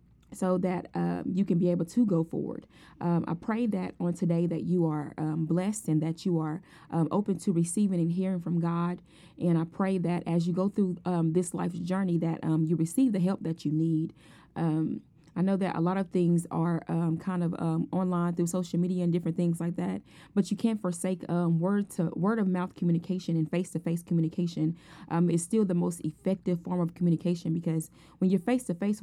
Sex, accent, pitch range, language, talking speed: female, American, 165-190 Hz, English, 210 wpm